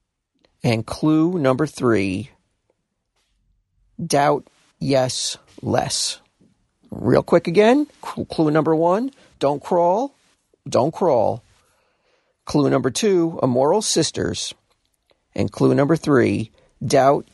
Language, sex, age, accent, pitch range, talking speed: English, male, 40-59, American, 125-190 Hz, 95 wpm